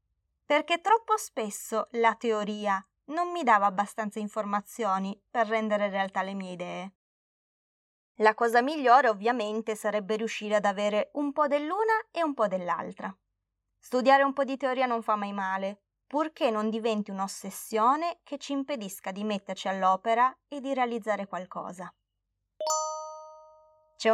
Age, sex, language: 20-39, female, Italian